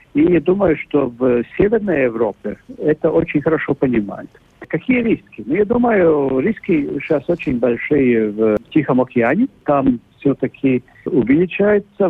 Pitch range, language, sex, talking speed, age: 120-165 Hz, Russian, male, 130 wpm, 50-69